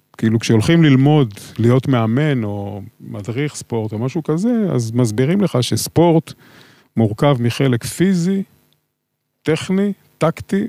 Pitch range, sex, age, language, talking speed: 115-145 Hz, male, 50-69, Hebrew, 110 wpm